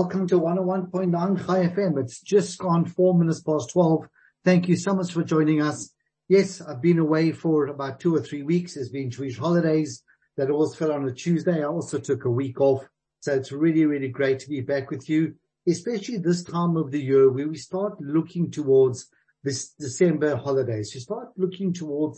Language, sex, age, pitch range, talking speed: English, male, 50-69, 135-175 Hz, 200 wpm